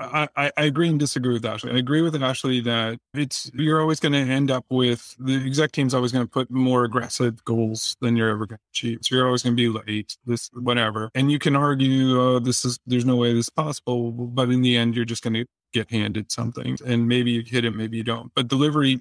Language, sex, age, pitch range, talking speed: English, male, 30-49, 120-135 Hz, 255 wpm